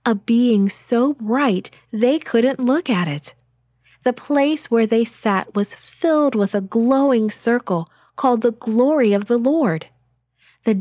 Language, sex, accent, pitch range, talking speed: English, female, American, 180-250 Hz, 150 wpm